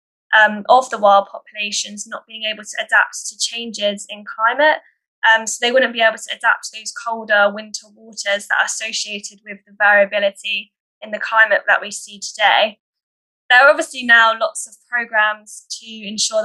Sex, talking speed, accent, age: female, 180 wpm, British, 10-29